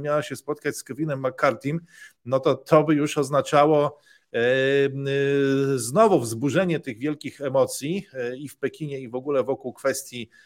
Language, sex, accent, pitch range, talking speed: Polish, male, native, 130-165 Hz, 160 wpm